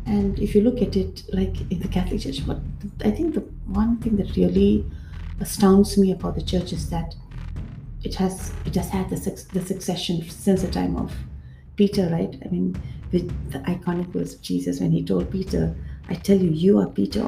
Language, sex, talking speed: English, female, 200 wpm